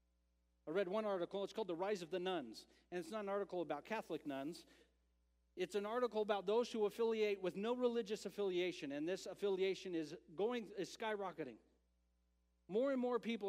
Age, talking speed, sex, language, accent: 40-59, 180 wpm, male, English, American